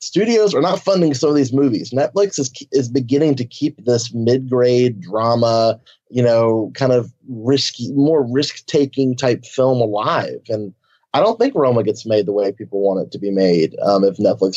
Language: English